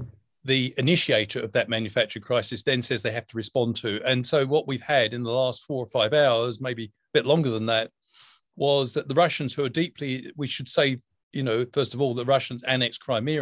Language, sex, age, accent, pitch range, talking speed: English, male, 40-59, British, 120-140 Hz, 225 wpm